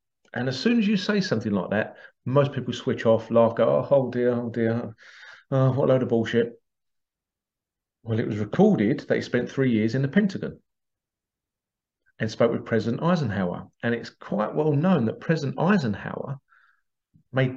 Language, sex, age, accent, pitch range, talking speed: English, male, 40-59, British, 110-140 Hz, 175 wpm